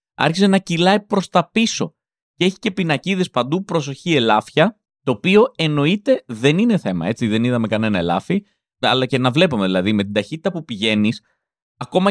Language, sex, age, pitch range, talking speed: Greek, male, 30-49, 135-205 Hz, 175 wpm